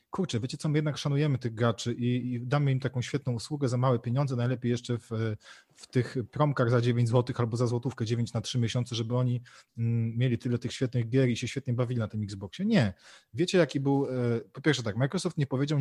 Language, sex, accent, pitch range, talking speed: Polish, male, native, 120-140 Hz, 215 wpm